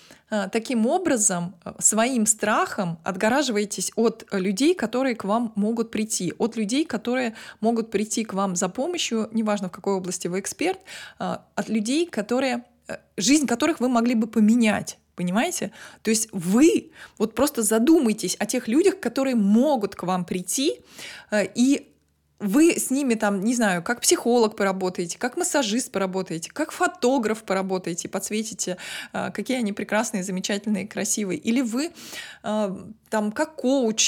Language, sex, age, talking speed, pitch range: Russian, female, 20-39, 135 wpm, 210-275 Hz